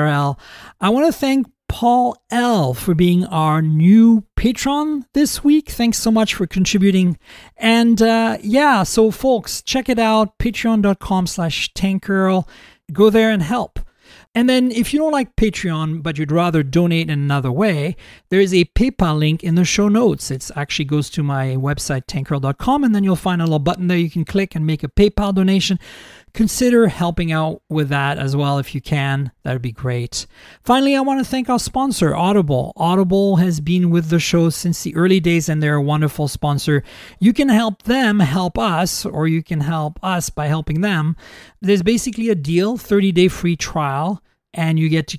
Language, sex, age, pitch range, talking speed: English, male, 40-59, 155-220 Hz, 185 wpm